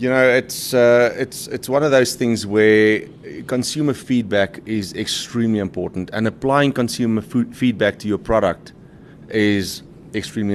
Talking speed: 150 wpm